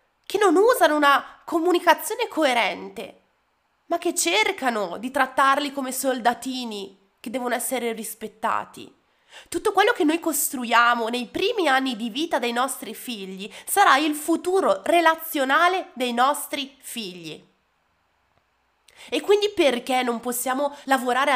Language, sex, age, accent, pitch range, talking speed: Italian, female, 20-39, native, 225-315 Hz, 120 wpm